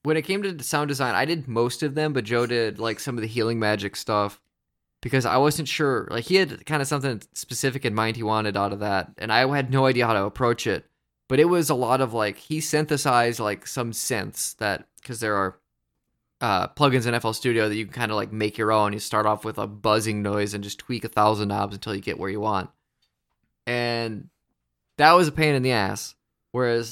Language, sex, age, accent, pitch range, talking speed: English, male, 20-39, American, 105-135 Hz, 235 wpm